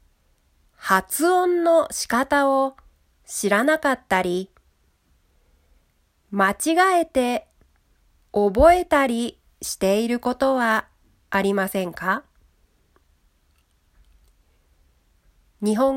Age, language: 40-59, Japanese